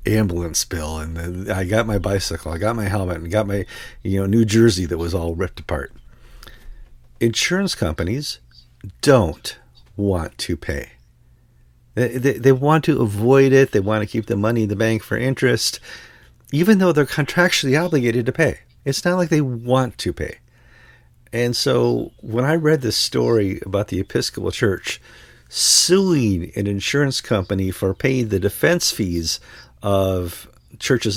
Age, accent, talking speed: 50-69, American, 160 wpm